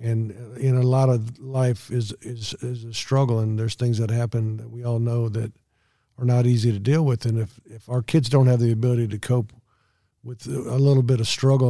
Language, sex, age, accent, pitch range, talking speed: English, male, 50-69, American, 115-130 Hz, 225 wpm